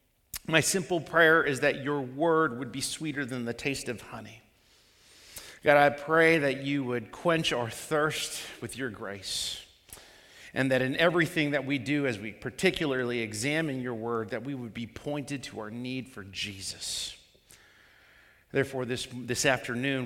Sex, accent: male, American